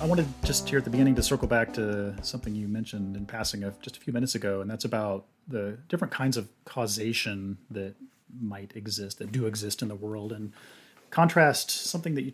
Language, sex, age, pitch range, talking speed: English, male, 30-49, 105-130 Hz, 215 wpm